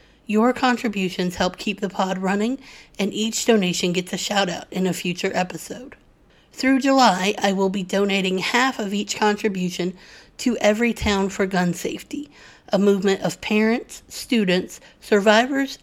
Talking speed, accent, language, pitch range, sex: 150 wpm, American, English, 185-215 Hz, female